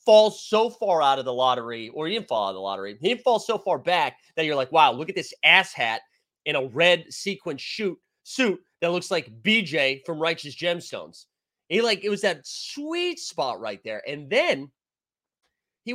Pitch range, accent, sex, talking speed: 150-225 Hz, American, male, 205 wpm